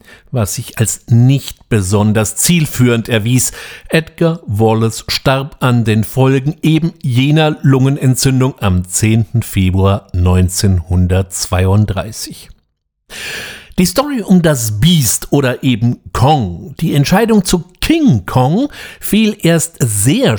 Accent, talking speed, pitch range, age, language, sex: German, 105 wpm, 110-165 Hz, 60-79, German, male